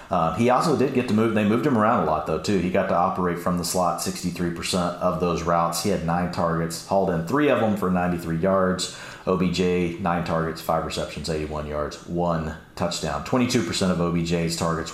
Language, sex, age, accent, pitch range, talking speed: English, male, 40-59, American, 85-100 Hz, 205 wpm